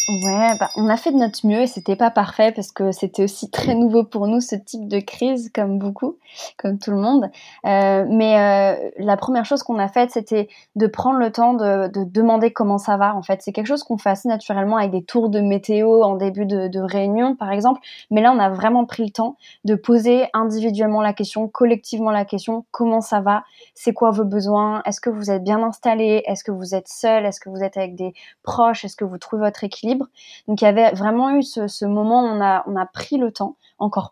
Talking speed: 235 wpm